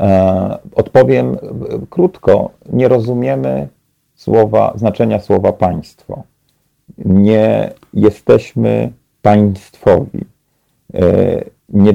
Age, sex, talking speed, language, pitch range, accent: 40-59, male, 55 wpm, Polish, 95-115 Hz, native